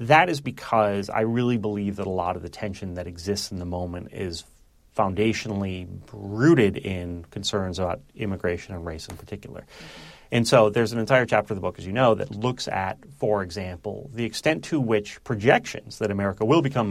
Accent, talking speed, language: American, 190 wpm, English